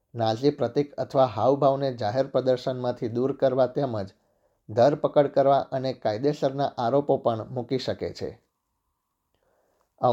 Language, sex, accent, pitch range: Gujarati, male, native, 120-140 Hz